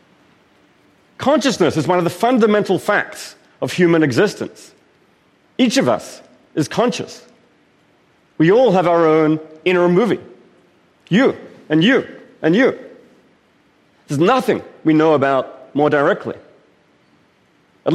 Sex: male